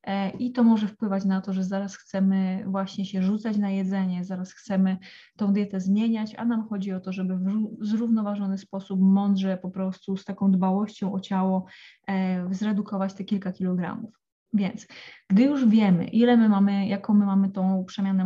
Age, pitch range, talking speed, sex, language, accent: 20-39, 190-210 Hz, 170 wpm, female, Polish, native